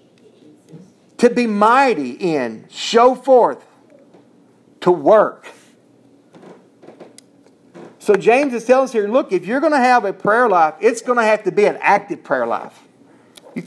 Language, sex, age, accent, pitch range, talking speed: English, male, 40-59, American, 210-260 Hz, 150 wpm